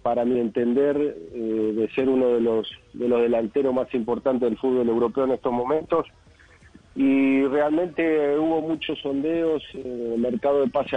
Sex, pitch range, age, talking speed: male, 120-145 Hz, 40-59, 170 wpm